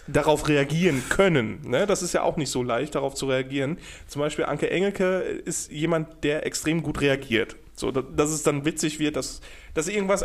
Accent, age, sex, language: German, 20-39, male, German